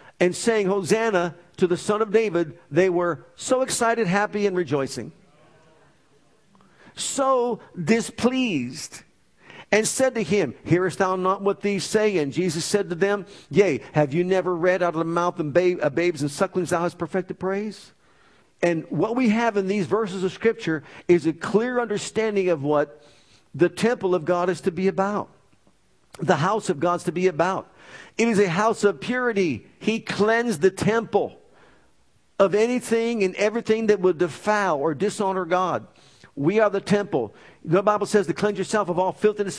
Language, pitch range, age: English, 180-220 Hz, 50-69